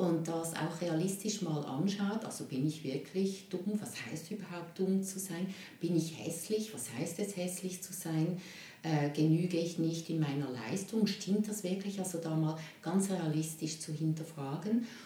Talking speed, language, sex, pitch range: 170 wpm, German, female, 155-195 Hz